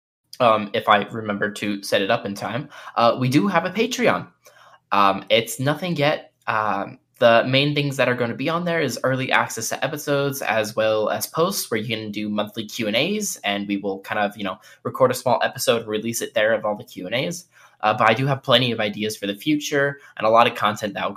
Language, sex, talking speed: English, male, 230 wpm